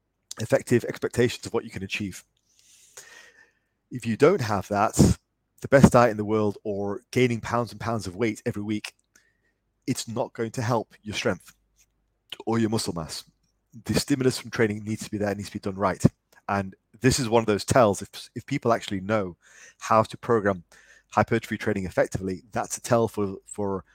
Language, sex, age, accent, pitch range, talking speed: English, male, 30-49, British, 105-120 Hz, 185 wpm